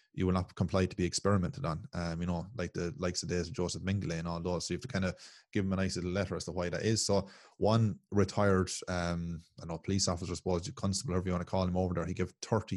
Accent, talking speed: Irish, 275 wpm